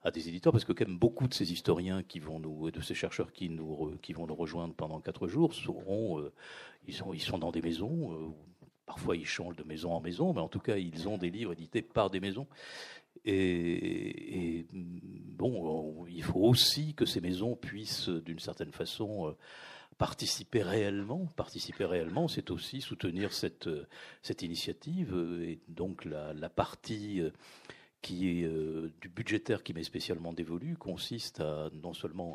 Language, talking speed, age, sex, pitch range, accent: French, 175 wpm, 50-69, male, 85-115 Hz, French